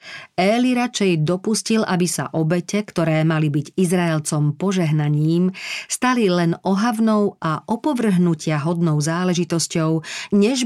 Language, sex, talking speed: Slovak, female, 105 wpm